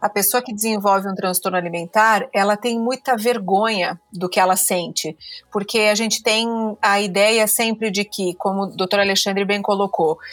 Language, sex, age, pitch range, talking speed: Portuguese, female, 30-49, 195-235 Hz, 175 wpm